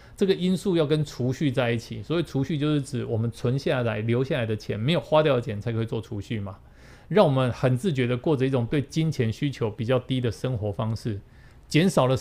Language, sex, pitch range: Chinese, male, 115-155 Hz